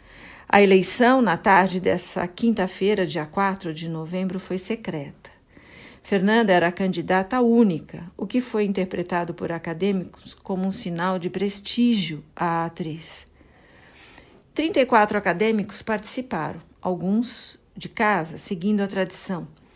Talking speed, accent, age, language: 120 wpm, Brazilian, 50-69, Portuguese